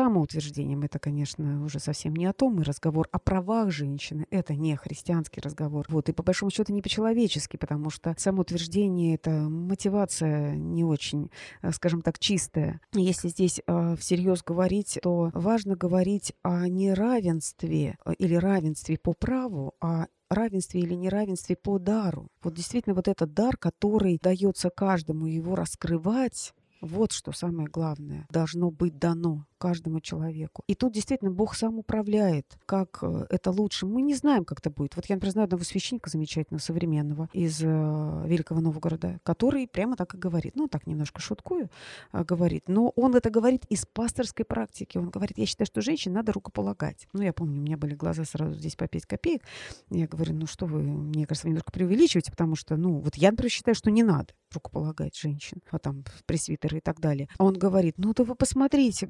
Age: 30-49